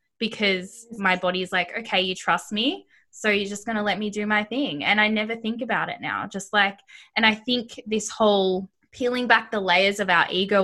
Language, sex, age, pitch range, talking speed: English, female, 10-29, 185-215 Hz, 220 wpm